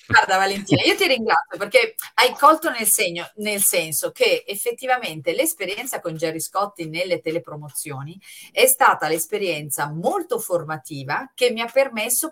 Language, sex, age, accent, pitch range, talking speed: Italian, female, 40-59, native, 140-210 Hz, 135 wpm